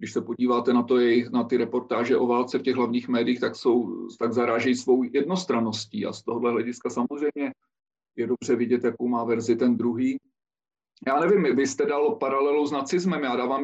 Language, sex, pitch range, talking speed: Slovak, male, 125-140 Hz, 195 wpm